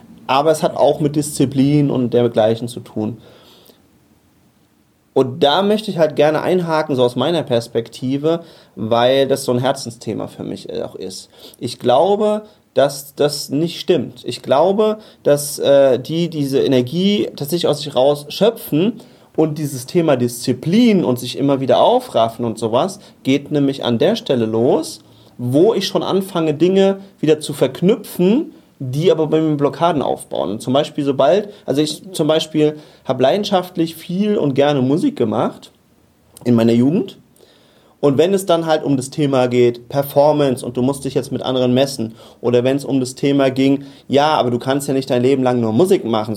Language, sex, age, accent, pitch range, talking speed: German, male, 40-59, German, 125-160 Hz, 170 wpm